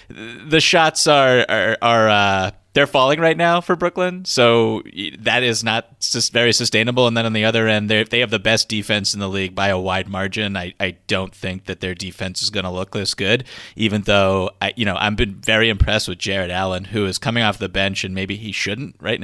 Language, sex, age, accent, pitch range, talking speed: English, male, 30-49, American, 95-120 Hz, 230 wpm